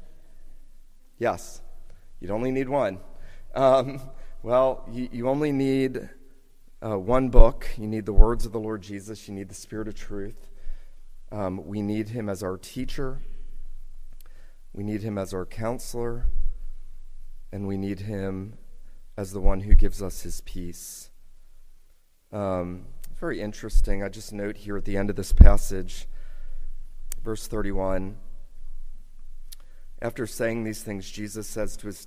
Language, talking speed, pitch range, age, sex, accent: English, 140 wpm, 95-115 Hz, 30-49, male, American